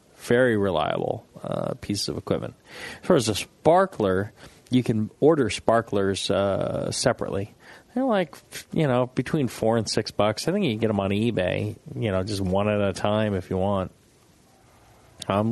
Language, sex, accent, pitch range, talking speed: English, male, American, 100-120 Hz, 175 wpm